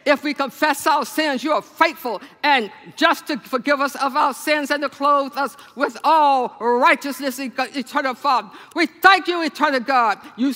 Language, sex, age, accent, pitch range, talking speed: English, female, 50-69, American, 270-310 Hz, 175 wpm